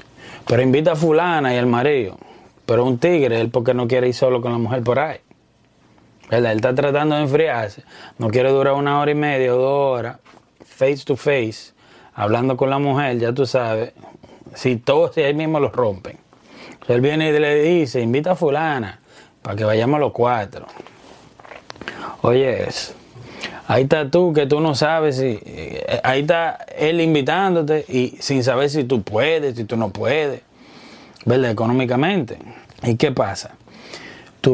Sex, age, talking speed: male, 30-49, 170 wpm